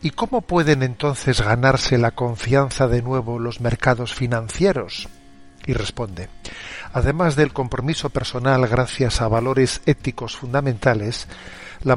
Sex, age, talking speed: male, 50-69, 120 wpm